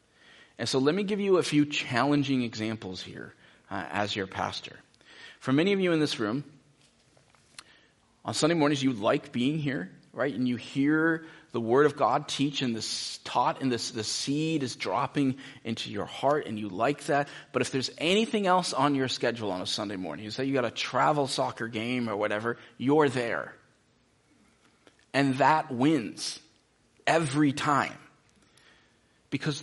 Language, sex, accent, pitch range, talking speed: English, male, American, 120-155 Hz, 170 wpm